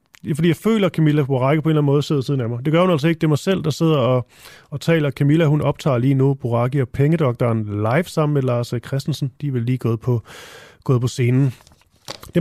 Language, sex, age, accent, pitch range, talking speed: Danish, male, 30-49, native, 125-160 Hz, 245 wpm